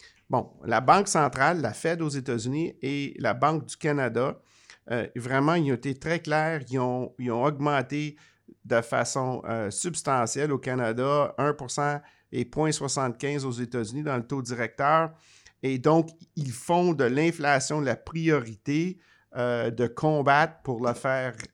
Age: 50-69